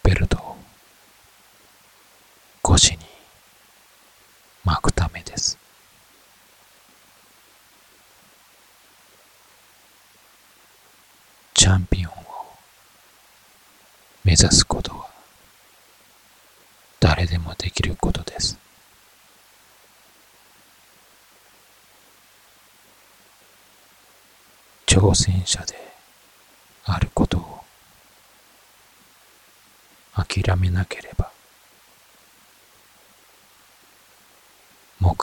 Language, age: Japanese, 40-59